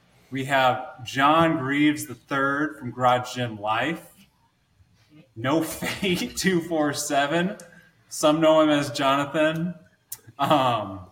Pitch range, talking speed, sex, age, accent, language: 110-140 Hz, 95 wpm, male, 20-39, American, English